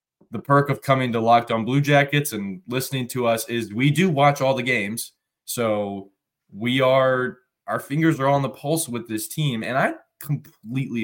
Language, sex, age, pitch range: English, male, 20-39, 110-135 Hz